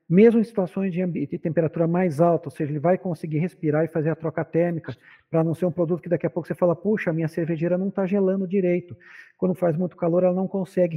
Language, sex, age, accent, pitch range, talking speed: Portuguese, male, 50-69, Brazilian, 155-185 Hz, 240 wpm